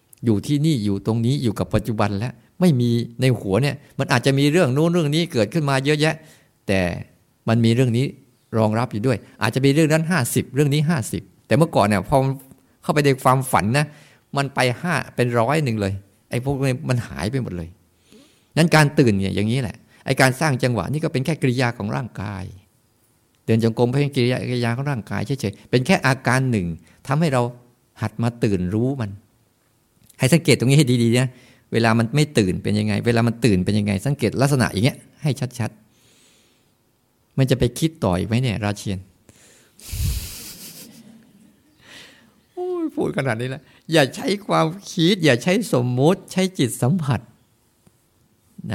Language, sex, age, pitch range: Thai, male, 60-79, 115-140 Hz